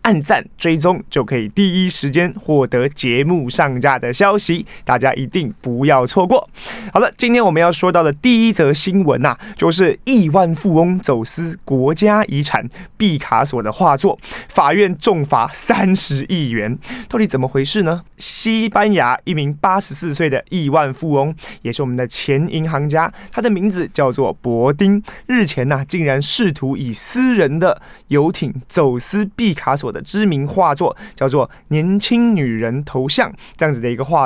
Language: Chinese